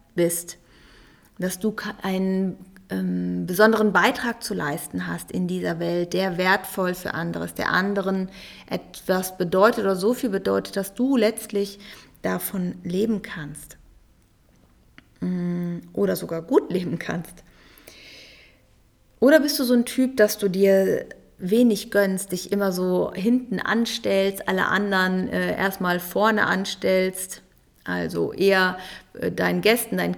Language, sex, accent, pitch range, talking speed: German, female, German, 180-210 Hz, 130 wpm